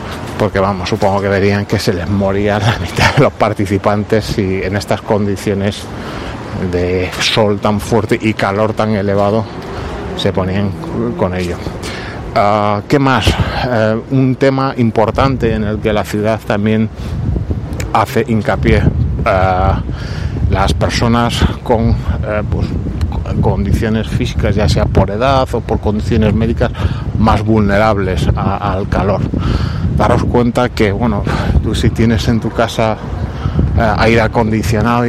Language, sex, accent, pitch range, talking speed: Spanish, male, Spanish, 100-115 Hz, 125 wpm